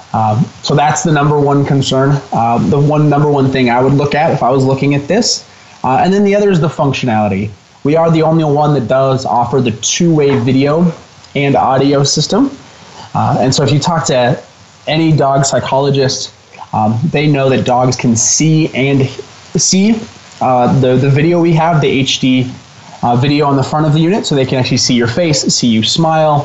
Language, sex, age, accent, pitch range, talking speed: English, male, 20-39, American, 120-155 Hz, 205 wpm